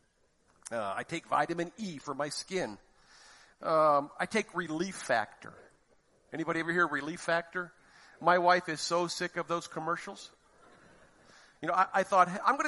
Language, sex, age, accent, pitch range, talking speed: English, male, 50-69, American, 155-210 Hz, 155 wpm